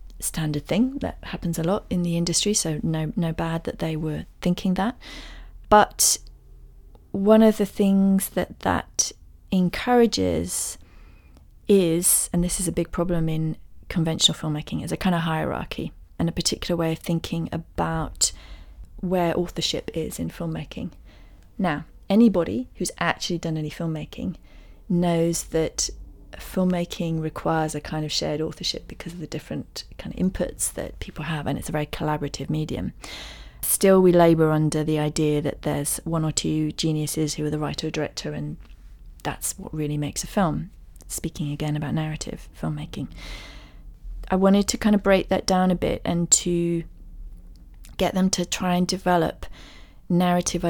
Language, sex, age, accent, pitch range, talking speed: English, female, 30-49, British, 145-180 Hz, 160 wpm